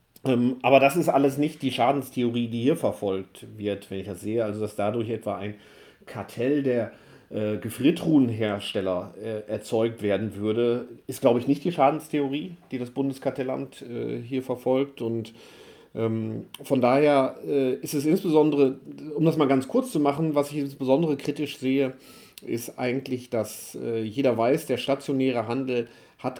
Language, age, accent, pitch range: German, 40-59, German, 115-140 Hz